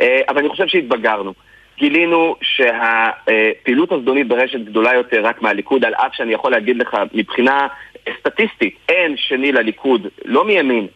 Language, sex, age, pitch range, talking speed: Hebrew, male, 30-49, 125-175 Hz, 135 wpm